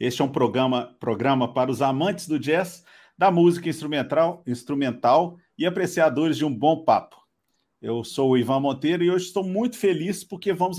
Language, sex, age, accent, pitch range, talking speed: Portuguese, male, 50-69, Brazilian, 145-180 Hz, 170 wpm